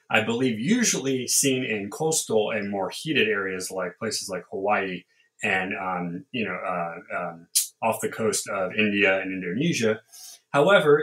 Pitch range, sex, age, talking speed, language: 110-150 Hz, male, 30-49, 150 wpm, English